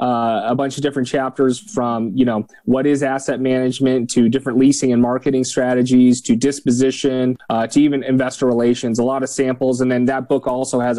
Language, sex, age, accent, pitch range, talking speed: English, male, 30-49, American, 115-135 Hz, 195 wpm